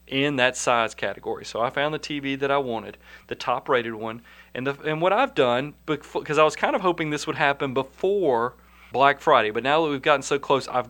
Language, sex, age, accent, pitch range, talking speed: English, male, 40-59, American, 120-155 Hz, 225 wpm